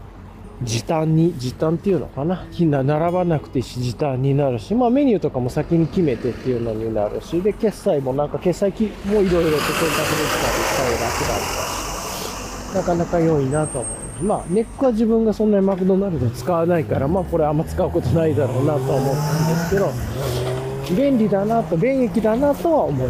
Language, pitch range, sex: Japanese, 145-210 Hz, male